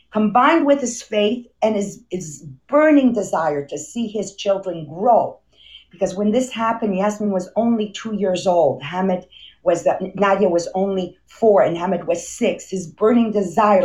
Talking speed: 160 wpm